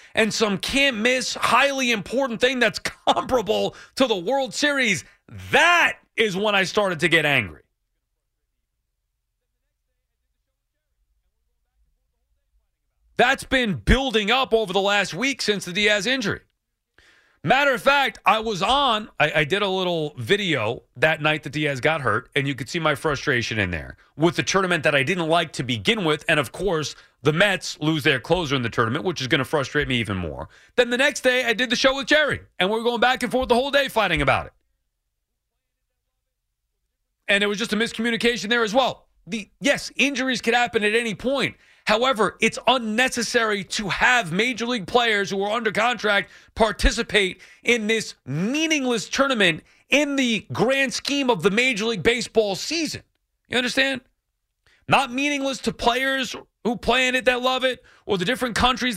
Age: 40-59